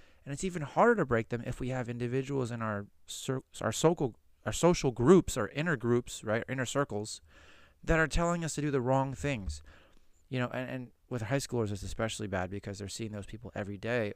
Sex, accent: male, American